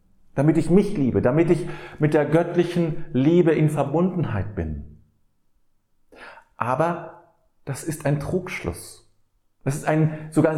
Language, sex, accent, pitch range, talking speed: German, male, German, 105-150 Hz, 125 wpm